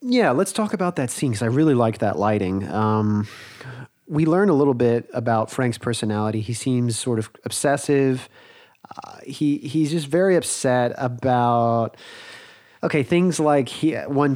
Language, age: English, 30-49